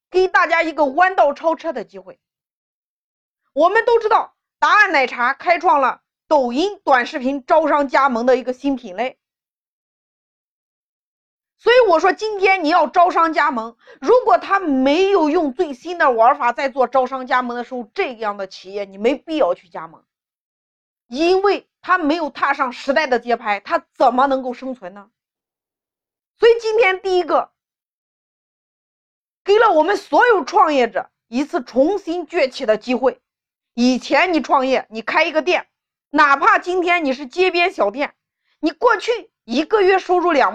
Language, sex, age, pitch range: Chinese, female, 30-49, 255-375 Hz